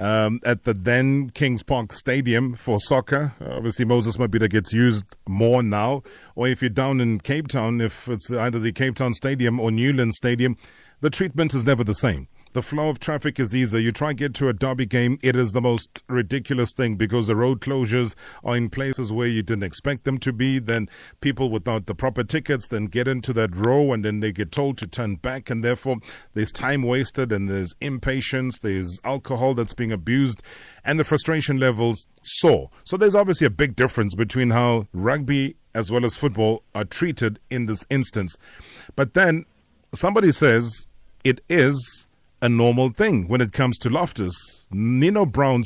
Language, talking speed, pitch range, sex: English, 190 wpm, 115-135 Hz, male